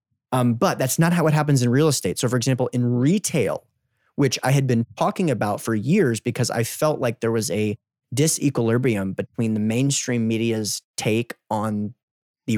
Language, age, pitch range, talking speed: English, 30-49, 110-140 Hz, 180 wpm